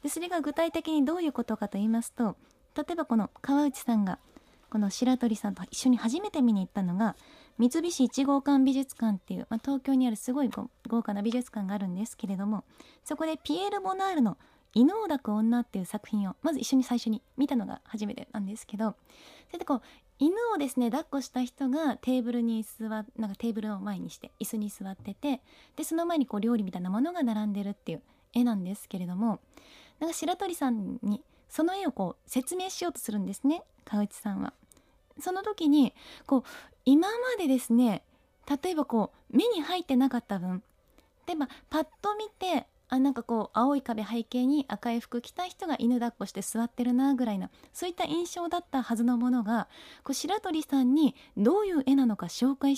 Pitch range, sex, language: 225-305 Hz, female, Japanese